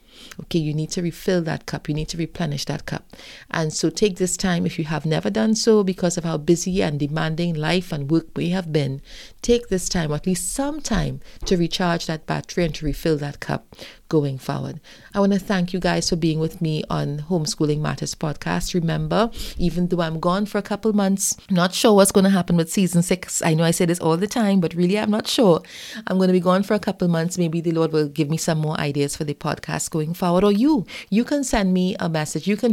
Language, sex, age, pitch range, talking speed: English, female, 30-49, 160-205 Hz, 240 wpm